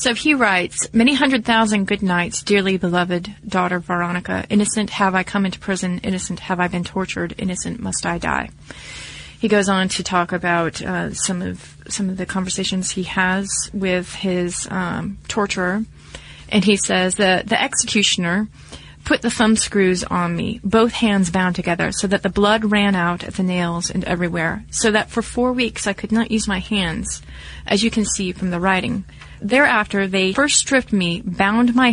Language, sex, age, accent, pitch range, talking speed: English, female, 30-49, American, 180-205 Hz, 185 wpm